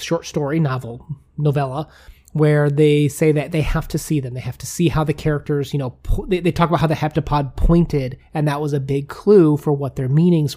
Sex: male